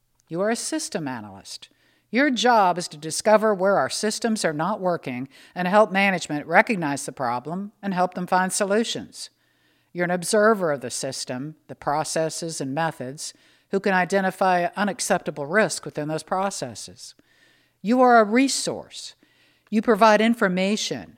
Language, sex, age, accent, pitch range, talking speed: English, female, 60-79, American, 150-210 Hz, 145 wpm